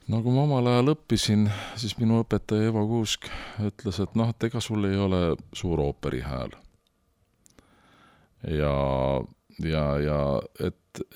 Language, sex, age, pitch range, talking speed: English, male, 50-69, 80-110 Hz, 130 wpm